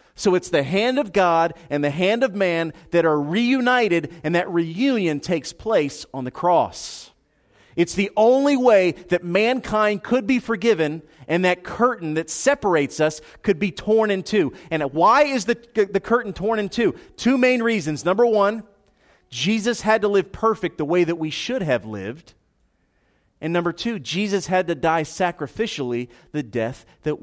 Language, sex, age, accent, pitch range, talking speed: English, male, 40-59, American, 145-235 Hz, 175 wpm